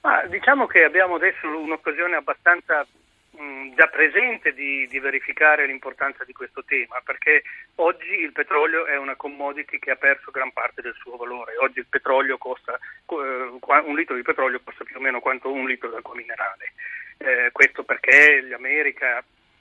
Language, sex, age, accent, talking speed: Italian, male, 40-59, native, 170 wpm